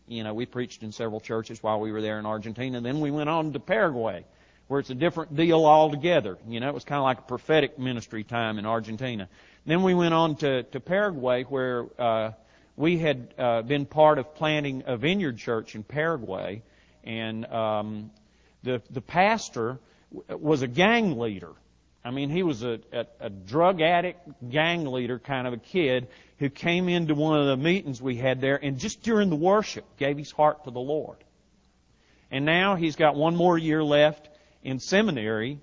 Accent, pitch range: American, 120-155 Hz